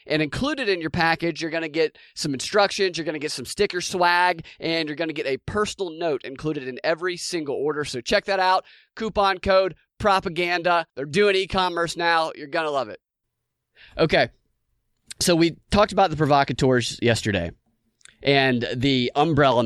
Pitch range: 115-160 Hz